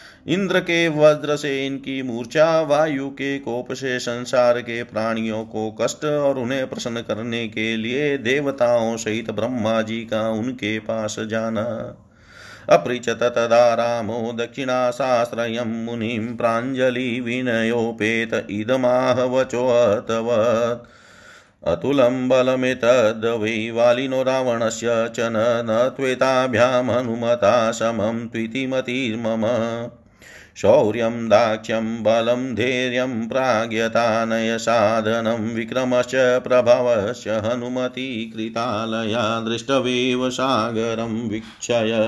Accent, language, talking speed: native, Hindi, 85 wpm